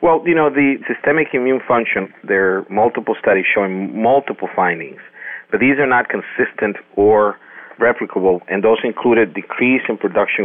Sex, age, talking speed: male, 40-59, 155 wpm